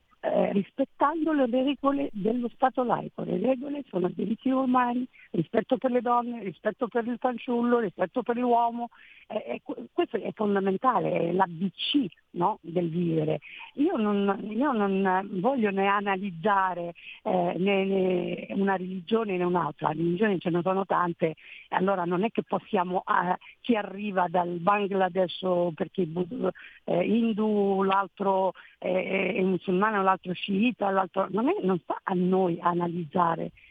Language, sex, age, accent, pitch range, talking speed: Italian, female, 50-69, native, 185-250 Hz, 145 wpm